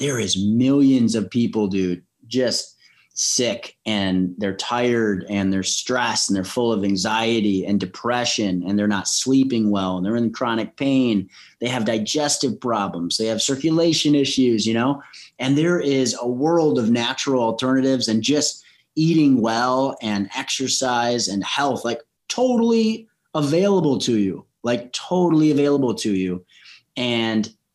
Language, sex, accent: English, male, American